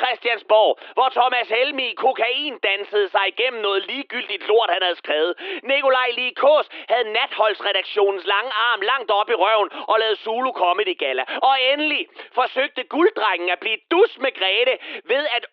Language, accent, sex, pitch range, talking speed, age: Danish, native, male, 215-340 Hz, 160 wpm, 30-49